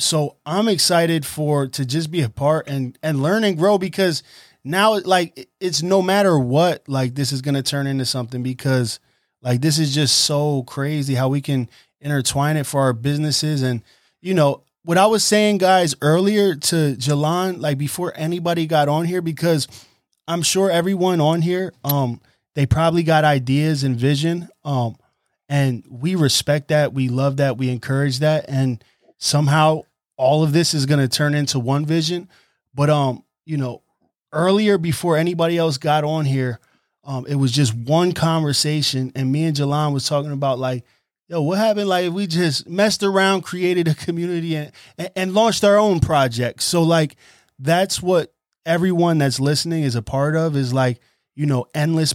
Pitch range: 135-170 Hz